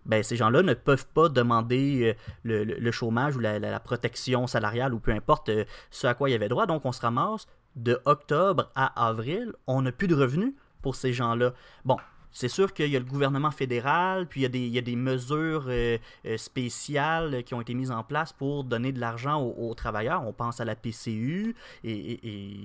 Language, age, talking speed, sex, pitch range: French, 30-49, 215 wpm, male, 115-145 Hz